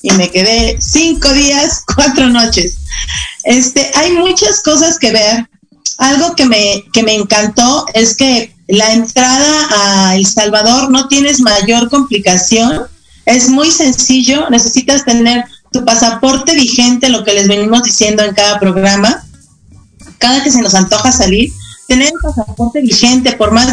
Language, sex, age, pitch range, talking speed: Spanish, female, 40-59, 205-265 Hz, 145 wpm